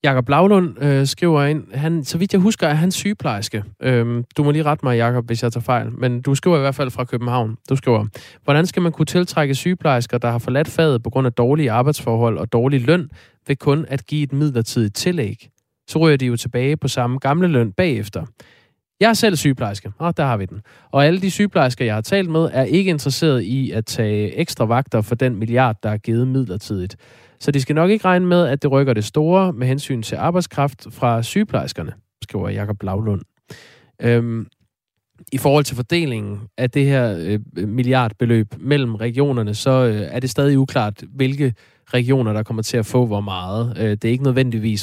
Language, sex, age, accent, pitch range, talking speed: Danish, male, 20-39, native, 115-145 Hz, 205 wpm